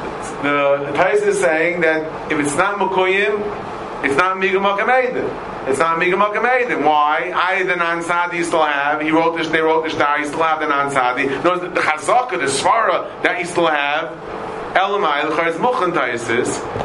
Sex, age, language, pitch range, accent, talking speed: male, 40-59, English, 155-200 Hz, American, 165 wpm